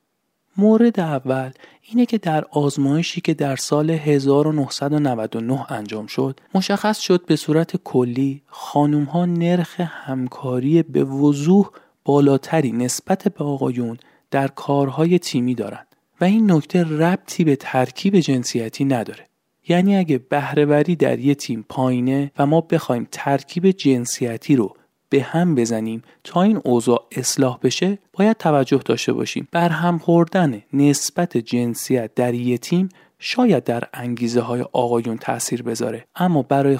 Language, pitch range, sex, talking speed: Persian, 130-175 Hz, male, 130 wpm